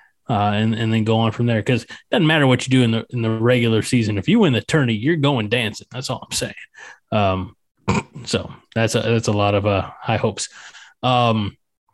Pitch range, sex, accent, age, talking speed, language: 115-130 Hz, male, American, 20-39, 225 wpm, English